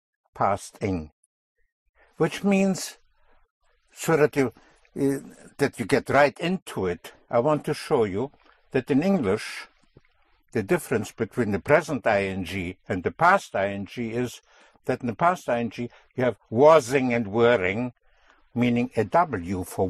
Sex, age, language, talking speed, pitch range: male, 60-79, English, 140 wpm, 110-145 Hz